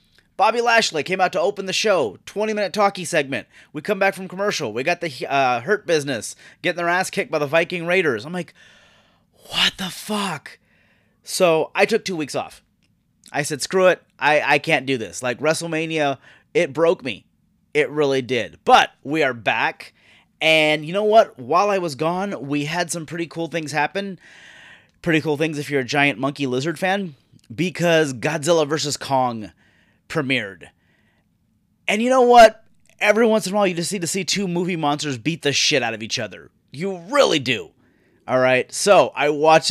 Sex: male